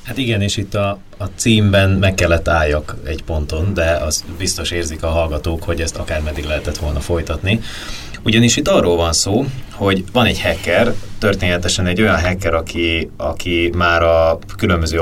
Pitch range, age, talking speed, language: 75-100 Hz, 30-49, 170 wpm, Hungarian